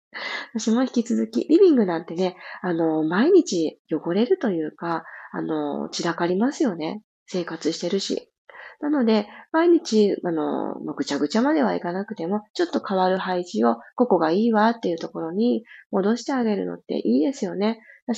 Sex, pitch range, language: female, 200-280 Hz, Japanese